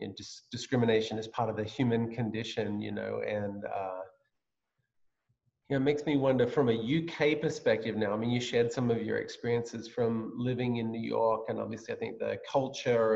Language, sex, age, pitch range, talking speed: English, male, 40-59, 105-130 Hz, 190 wpm